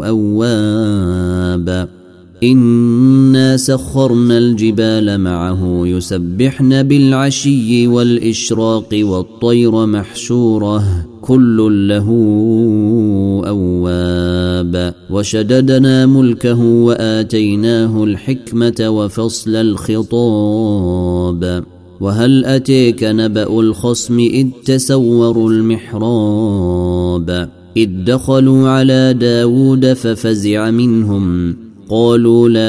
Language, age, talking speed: Arabic, 30-49, 60 wpm